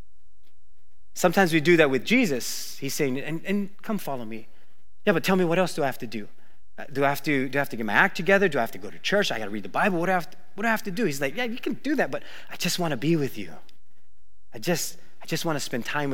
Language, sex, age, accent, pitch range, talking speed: English, male, 30-49, American, 115-150 Hz, 310 wpm